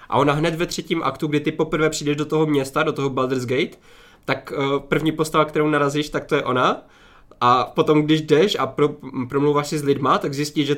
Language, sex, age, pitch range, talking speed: Czech, male, 20-39, 135-150 Hz, 215 wpm